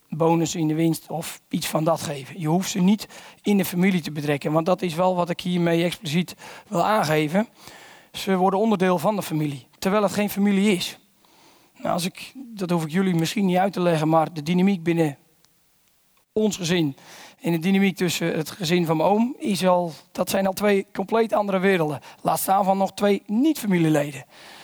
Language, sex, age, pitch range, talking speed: English, male, 40-59, 160-205 Hz, 185 wpm